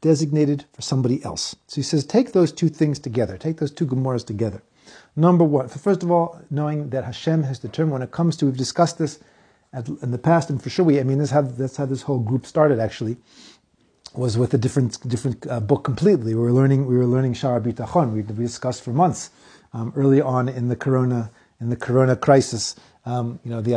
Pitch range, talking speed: 120-155 Hz, 220 wpm